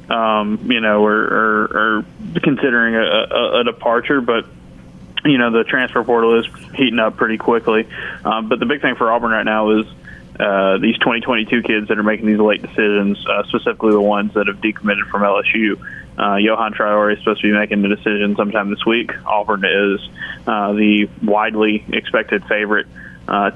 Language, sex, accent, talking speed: English, male, American, 185 wpm